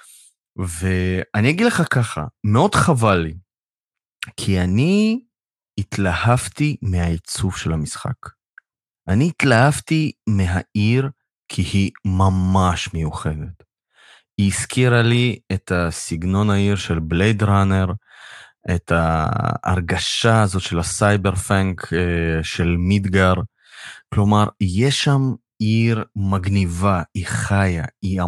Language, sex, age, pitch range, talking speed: Hebrew, male, 30-49, 90-115 Hz, 95 wpm